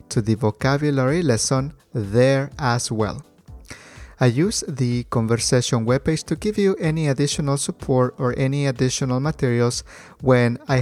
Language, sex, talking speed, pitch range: English, male, 135 wpm, 115-140 Hz